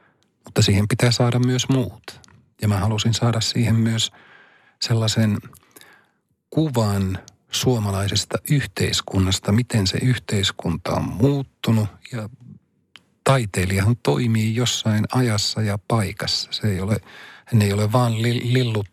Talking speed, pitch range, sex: 115 wpm, 100-125 Hz, male